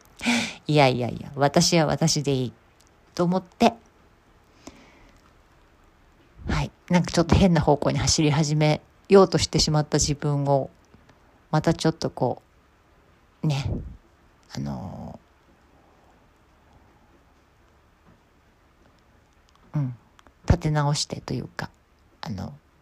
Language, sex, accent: Japanese, female, native